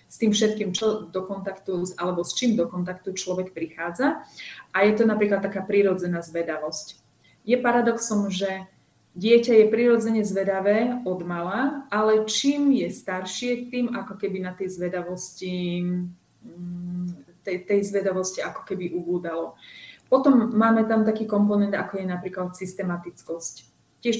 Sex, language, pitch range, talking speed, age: female, Slovak, 175-215 Hz, 135 wpm, 30-49